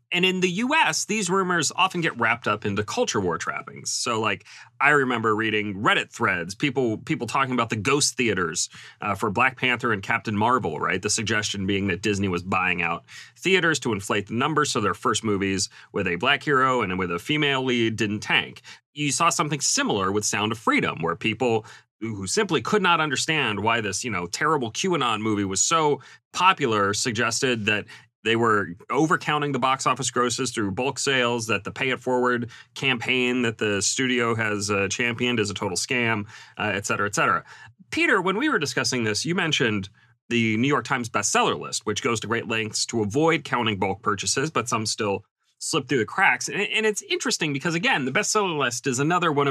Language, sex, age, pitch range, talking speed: English, male, 30-49, 105-140 Hz, 200 wpm